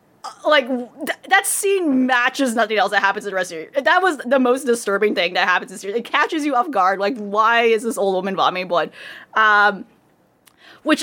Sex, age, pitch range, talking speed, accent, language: female, 20-39, 190-250 Hz, 225 wpm, American, English